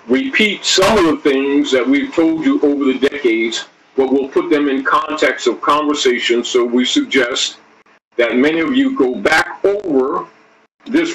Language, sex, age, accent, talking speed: English, male, 50-69, American, 165 wpm